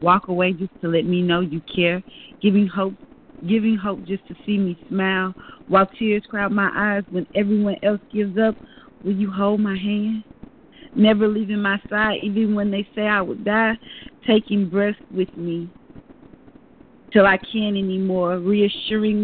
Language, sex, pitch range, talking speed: English, female, 195-220 Hz, 165 wpm